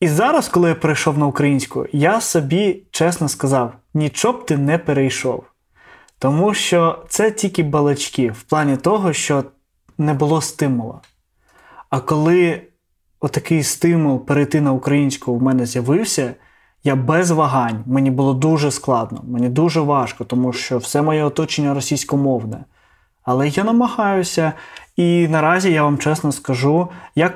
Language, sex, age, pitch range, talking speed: Ukrainian, male, 20-39, 135-165 Hz, 140 wpm